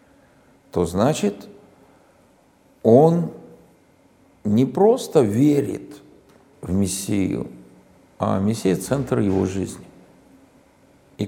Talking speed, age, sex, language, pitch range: 75 wpm, 50-69, male, Russian, 105-155 Hz